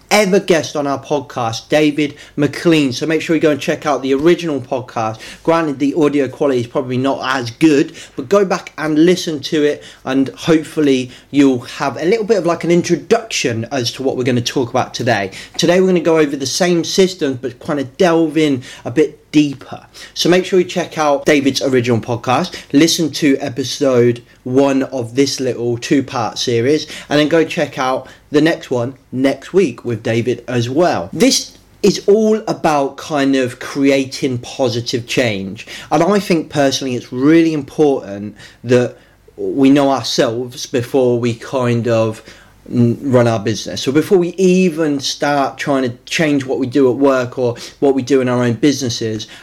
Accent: British